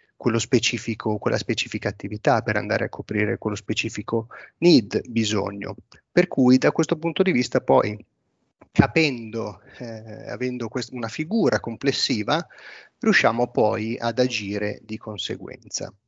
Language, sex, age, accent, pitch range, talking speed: Italian, male, 30-49, native, 110-135 Hz, 120 wpm